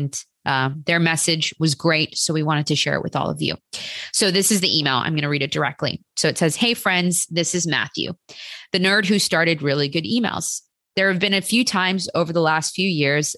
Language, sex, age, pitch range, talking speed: English, female, 20-39, 150-185 Hz, 240 wpm